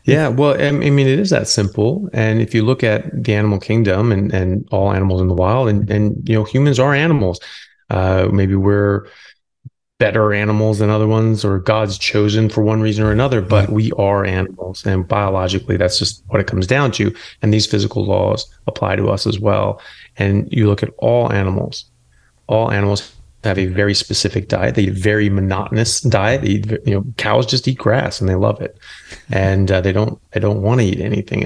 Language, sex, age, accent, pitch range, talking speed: English, male, 30-49, American, 100-110 Hz, 210 wpm